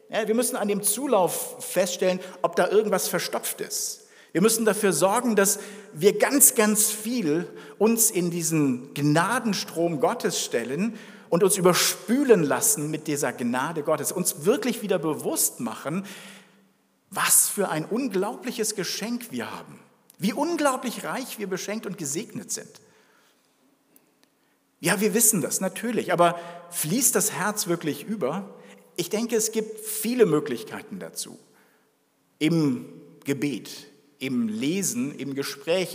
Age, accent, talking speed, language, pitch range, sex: 50-69, German, 130 wpm, German, 170-225 Hz, male